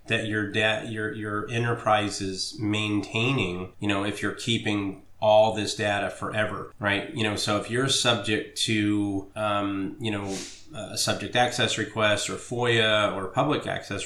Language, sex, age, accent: English, male, 30-49, American